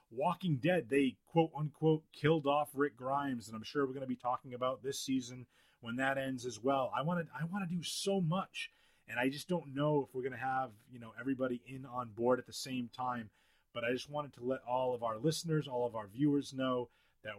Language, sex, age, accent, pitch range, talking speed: English, male, 30-49, American, 115-140 Hz, 230 wpm